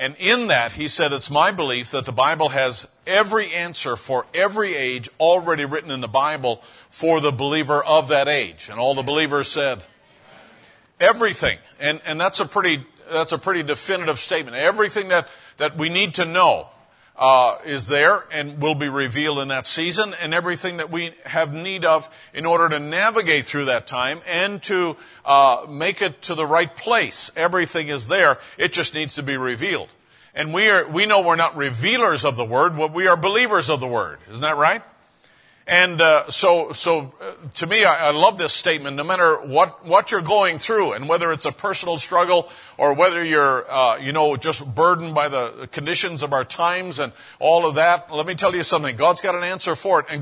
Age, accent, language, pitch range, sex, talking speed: 50-69, American, English, 145-180 Hz, male, 200 wpm